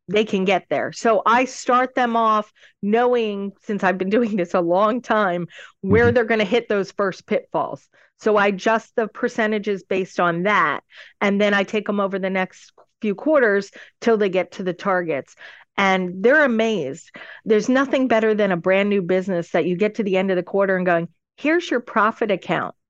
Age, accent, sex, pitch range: 40-59, American, female, 185-230 Hz